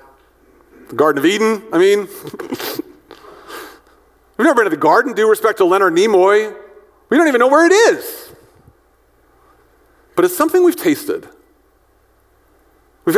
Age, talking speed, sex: 40-59, 135 wpm, male